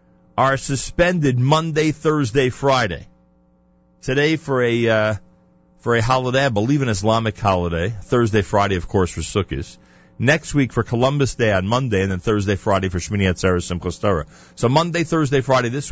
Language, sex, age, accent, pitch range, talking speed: English, male, 40-59, American, 85-130 Hz, 160 wpm